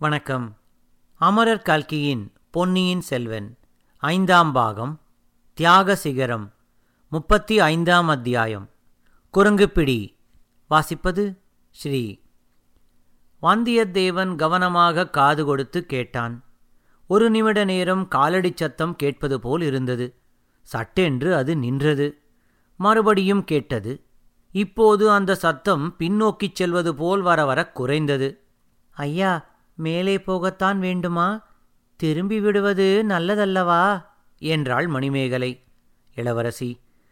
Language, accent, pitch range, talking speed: Tamil, native, 135-195 Hz, 80 wpm